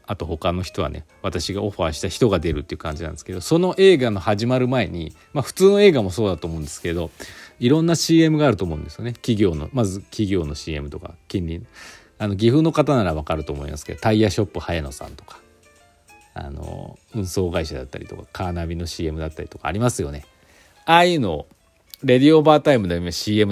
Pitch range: 85-130 Hz